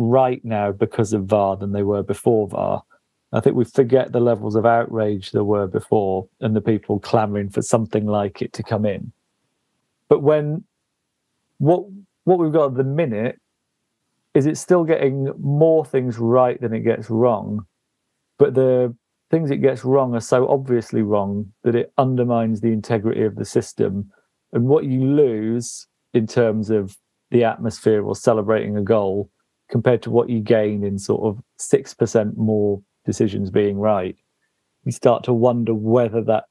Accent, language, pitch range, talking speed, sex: British, English, 105-130 Hz, 170 wpm, male